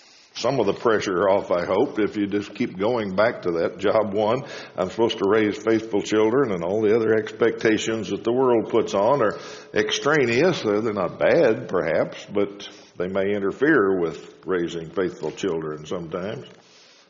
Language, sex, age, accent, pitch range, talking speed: English, male, 60-79, American, 105-130 Hz, 170 wpm